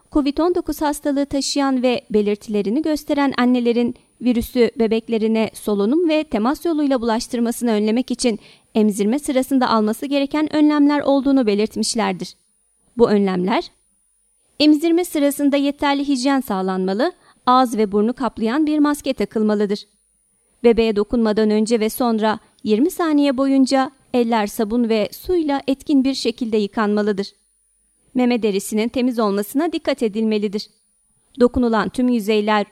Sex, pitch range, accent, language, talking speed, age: female, 220-280 Hz, native, Turkish, 115 wpm, 30-49